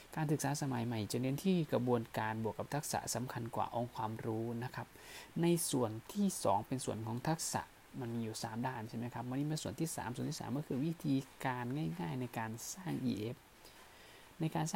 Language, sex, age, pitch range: Thai, male, 20-39, 115-155 Hz